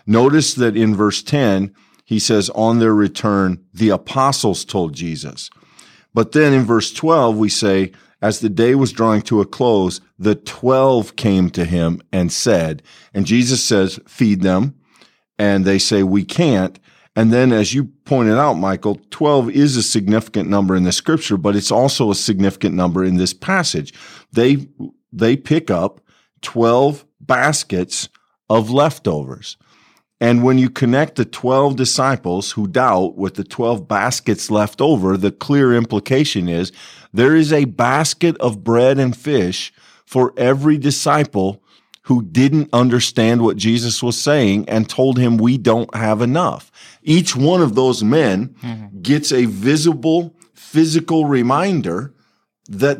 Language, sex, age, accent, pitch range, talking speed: English, male, 50-69, American, 105-140 Hz, 150 wpm